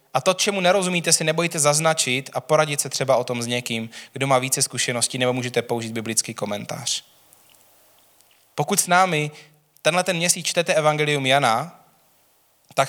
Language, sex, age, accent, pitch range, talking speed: Czech, male, 20-39, native, 115-135 Hz, 155 wpm